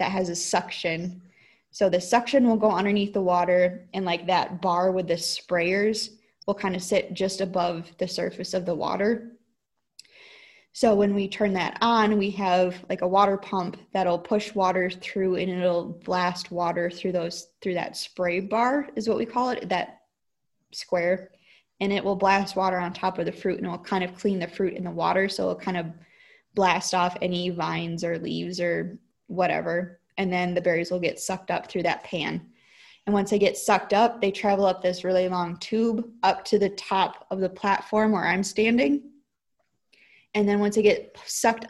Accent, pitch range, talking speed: American, 180-210 Hz, 195 wpm